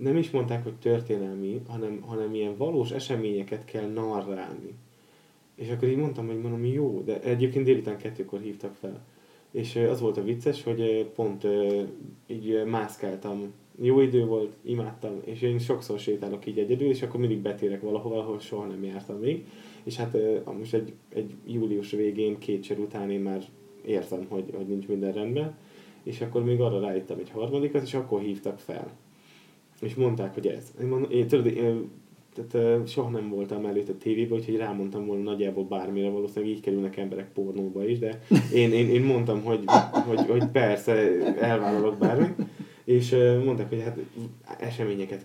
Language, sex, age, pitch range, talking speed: Hungarian, male, 20-39, 100-120 Hz, 165 wpm